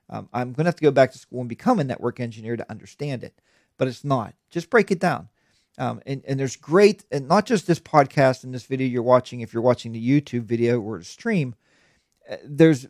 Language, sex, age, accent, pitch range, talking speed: English, male, 40-59, American, 115-160 Hz, 235 wpm